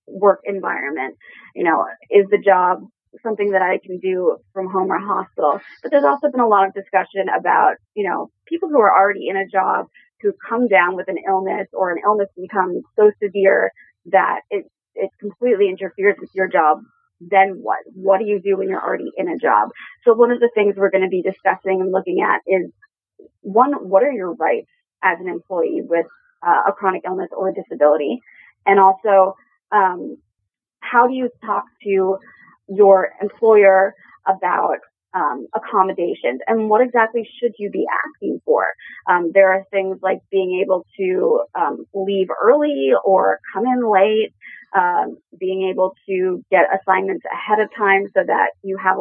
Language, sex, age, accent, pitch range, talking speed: English, female, 20-39, American, 190-230 Hz, 180 wpm